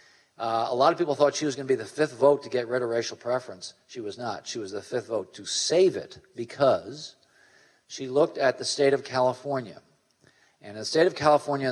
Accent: American